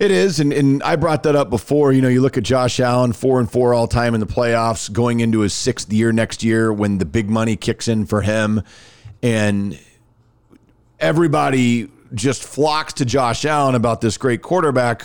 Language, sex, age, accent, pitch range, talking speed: English, male, 40-59, American, 115-140 Hz, 200 wpm